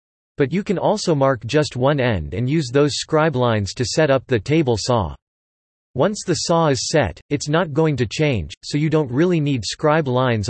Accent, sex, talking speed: American, male, 205 wpm